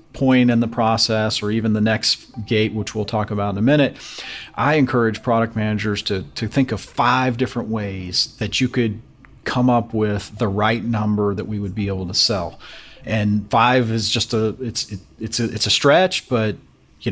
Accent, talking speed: American, 195 wpm